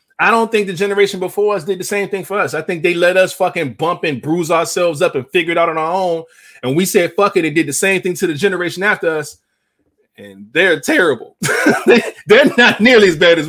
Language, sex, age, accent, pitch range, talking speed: English, male, 20-39, American, 110-165 Hz, 245 wpm